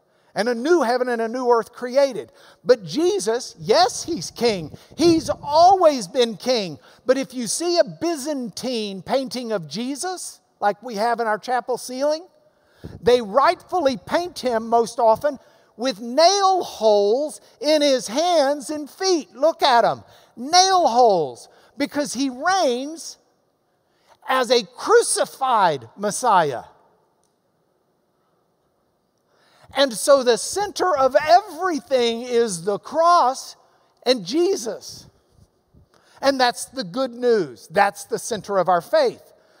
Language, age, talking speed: English, 60-79, 125 wpm